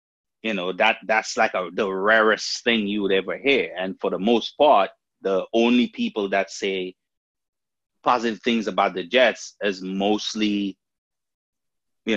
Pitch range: 95-120 Hz